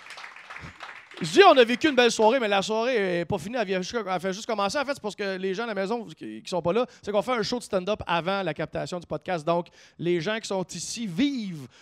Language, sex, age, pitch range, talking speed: English, male, 30-49, 185-240 Hz, 275 wpm